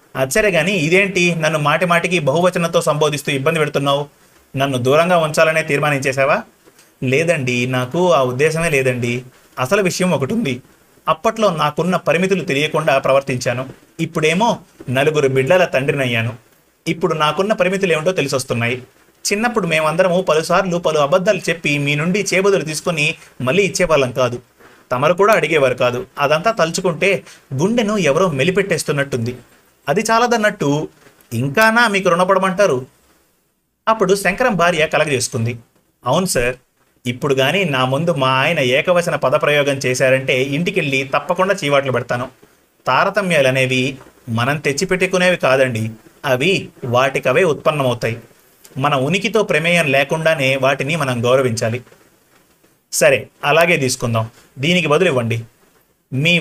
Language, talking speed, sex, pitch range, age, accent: Telugu, 115 wpm, male, 130-185 Hz, 30-49, native